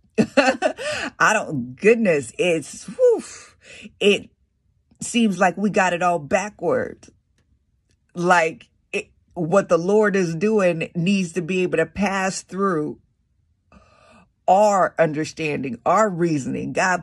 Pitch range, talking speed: 155-205 Hz, 105 wpm